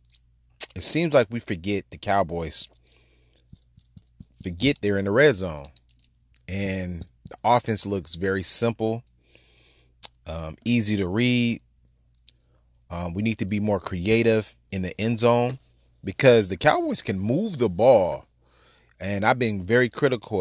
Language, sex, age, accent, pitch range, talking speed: English, male, 30-49, American, 70-105 Hz, 135 wpm